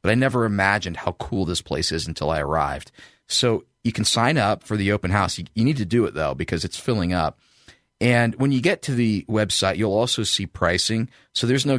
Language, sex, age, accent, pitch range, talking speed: English, male, 40-59, American, 90-115 Hz, 230 wpm